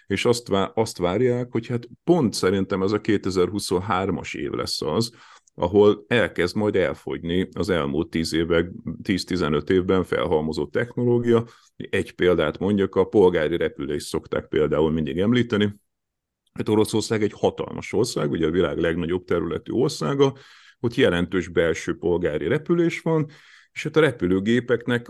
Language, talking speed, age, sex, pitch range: Hungarian, 130 wpm, 50-69, male, 85-120 Hz